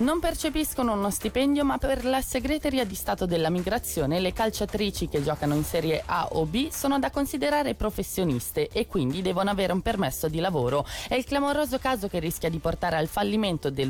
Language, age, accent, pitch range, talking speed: Italian, 20-39, native, 135-190 Hz, 190 wpm